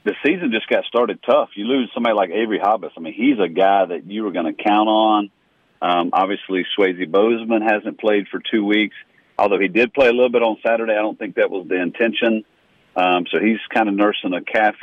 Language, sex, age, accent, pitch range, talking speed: English, male, 50-69, American, 95-115 Hz, 230 wpm